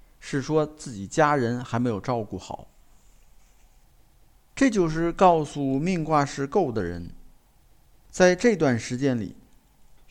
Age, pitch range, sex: 50-69, 125-185 Hz, male